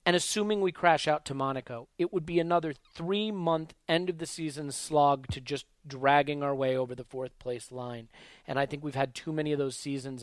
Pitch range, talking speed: 130-165 Hz, 195 wpm